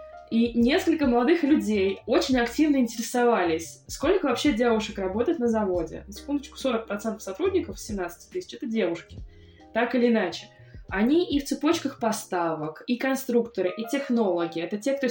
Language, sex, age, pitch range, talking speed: Russian, female, 20-39, 200-265 Hz, 140 wpm